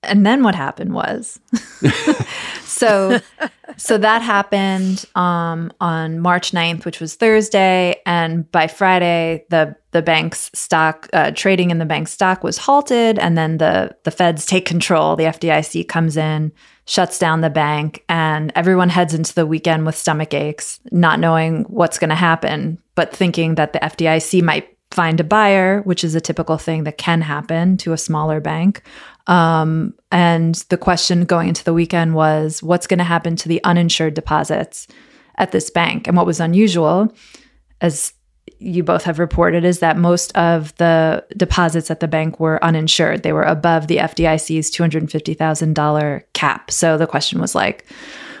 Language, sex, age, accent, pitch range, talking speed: English, female, 20-39, American, 160-180 Hz, 165 wpm